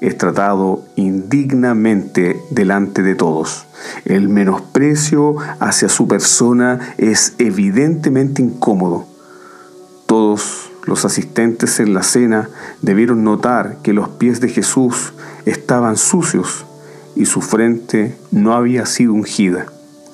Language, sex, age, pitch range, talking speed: Spanish, male, 40-59, 105-135 Hz, 105 wpm